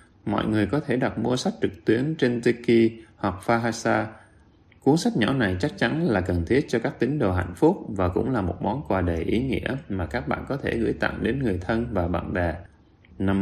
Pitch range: 90-120 Hz